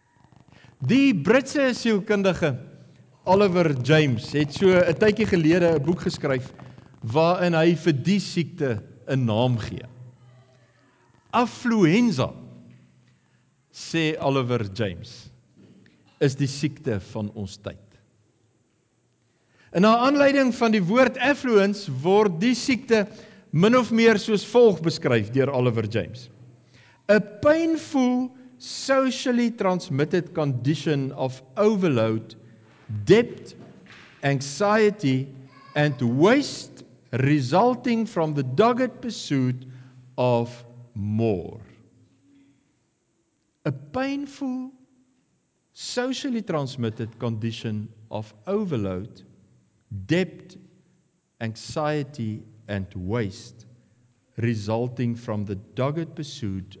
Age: 50-69